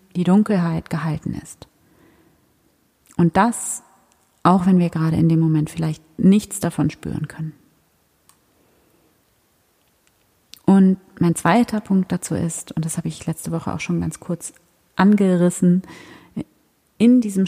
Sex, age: female, 30-49